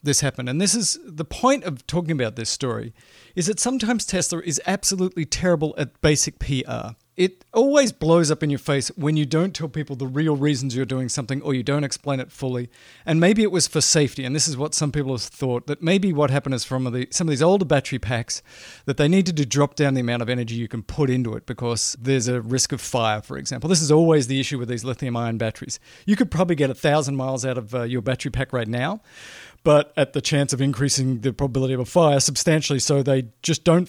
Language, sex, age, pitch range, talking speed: English, male, 40-59, 130-160 Hz, 240 wpm